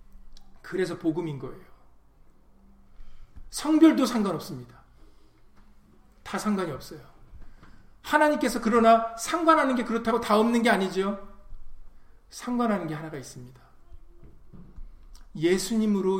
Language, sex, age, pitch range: Korean, male, 40-59, 145-200 Hz